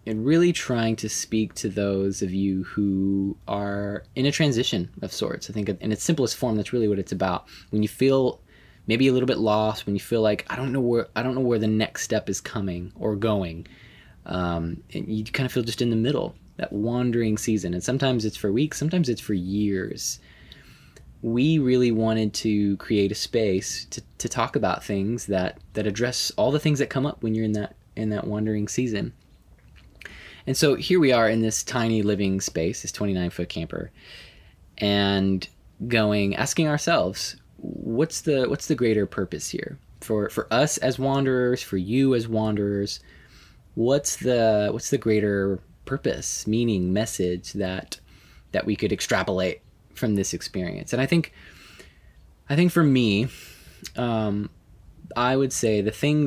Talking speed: 180 wpm